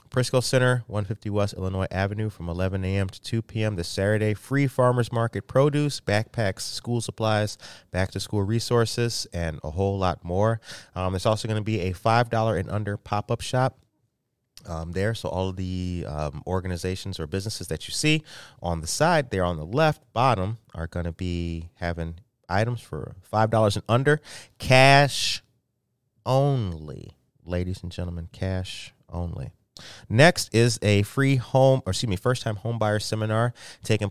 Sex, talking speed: male, 160 wpm